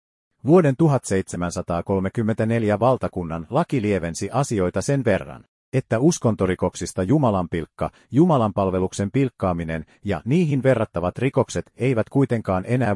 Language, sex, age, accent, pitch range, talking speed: Finnish, male, 50-69, native, 90-125 Hz, 100 wpm